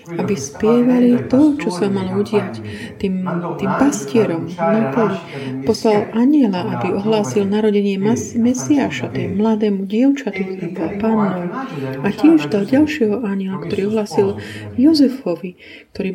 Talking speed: 110 wpm